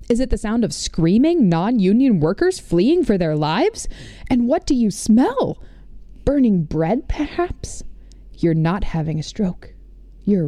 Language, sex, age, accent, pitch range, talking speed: English, female, 20-39, American, 160-225 Hz, 150 wpm